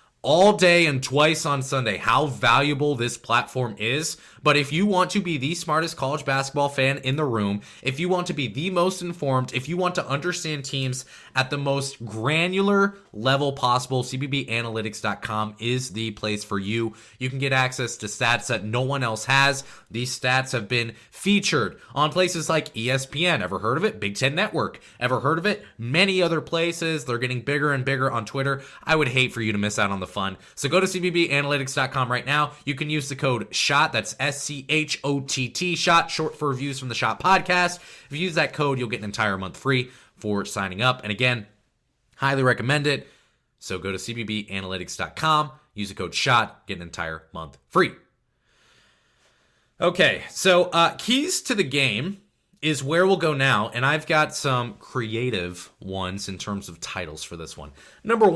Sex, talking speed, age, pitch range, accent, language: male, 190 wpm, 20-39, 115-155 Hz, American, English